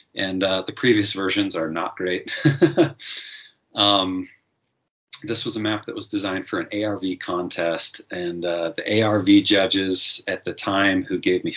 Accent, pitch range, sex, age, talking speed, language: American, 85-95 Hz, male, 30-49, 160 wpm, English